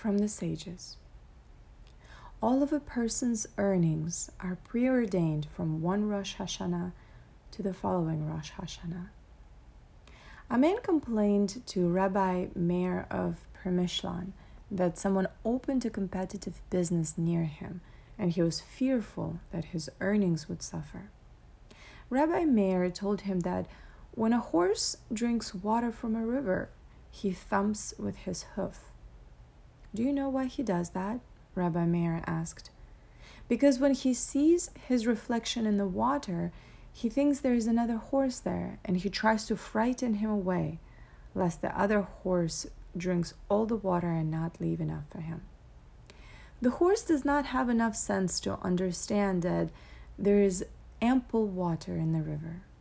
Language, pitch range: English, 175-230 Hz